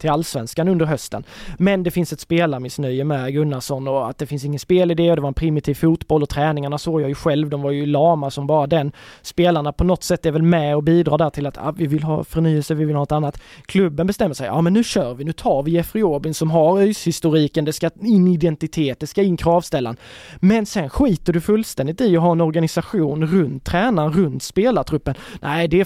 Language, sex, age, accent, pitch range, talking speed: Swedish, male, 20-39, native, 150-185 Hz, 235 wpm